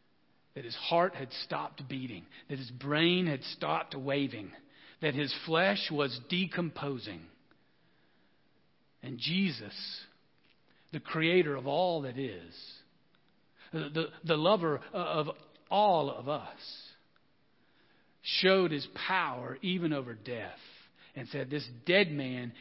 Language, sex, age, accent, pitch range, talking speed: English, male, 50-69, American, 130-160 Hz, 115 wpm